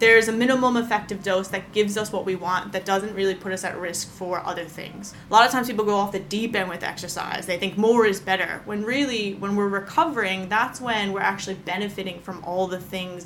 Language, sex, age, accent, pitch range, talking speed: English, female, 20-39, American, 185-220 Hz, 235 wpm